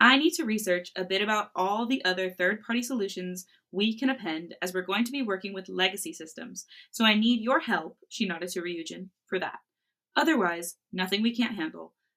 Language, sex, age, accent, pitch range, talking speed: English, female, 20-39, American, 175-240 Hz, 200 wpm